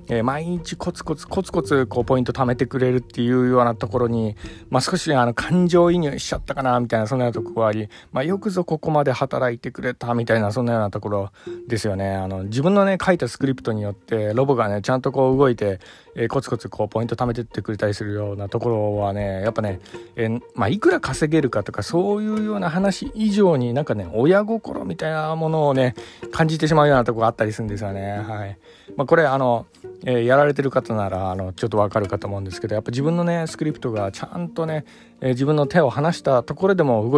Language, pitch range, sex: Japanese, 110-160 Hz, male